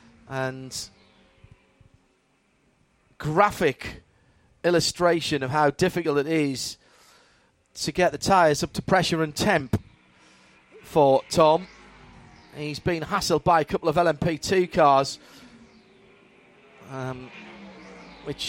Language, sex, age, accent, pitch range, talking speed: English, male, 30-49, British, 145-180 Hz, 95 wpm